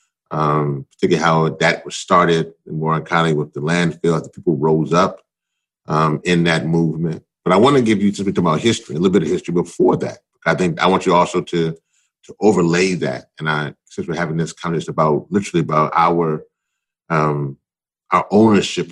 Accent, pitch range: American, 80-90 Hz